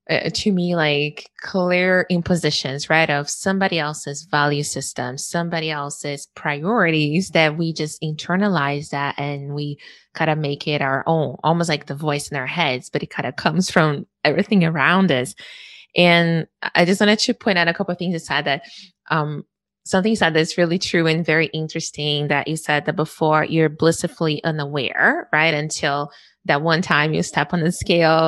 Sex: female